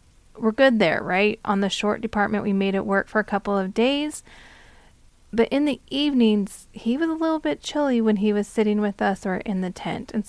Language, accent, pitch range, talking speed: English, American, 200-245 Hz, 220 wpm